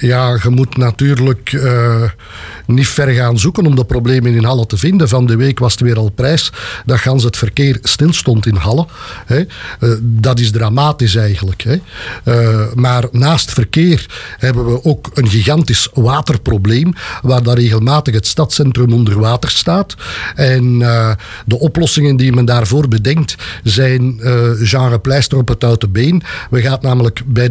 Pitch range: 120-150 Hz